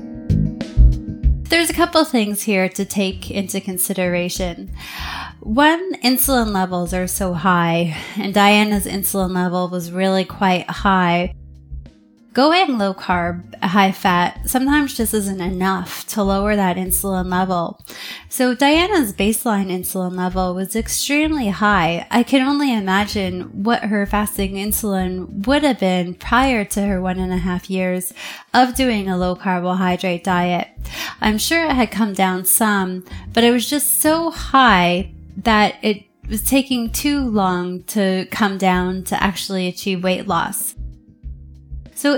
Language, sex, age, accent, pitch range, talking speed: English, female, 20-39, American, 180-230 Hz, 140 wpm